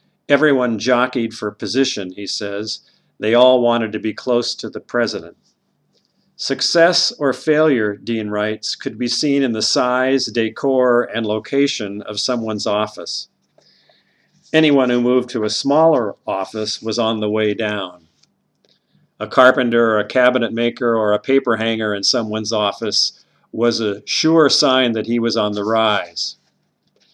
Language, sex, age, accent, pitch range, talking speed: English, male, 50-69, American, 105-130 Hz, 150 wpm